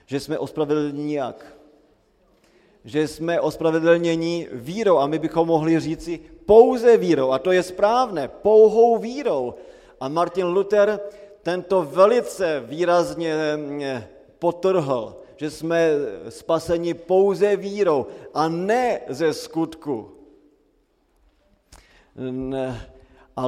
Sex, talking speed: male, 95 wpm